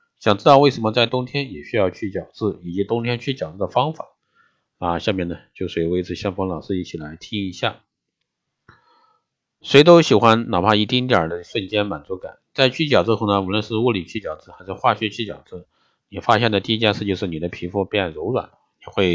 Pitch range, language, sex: 95-130 Hz, Chinese, male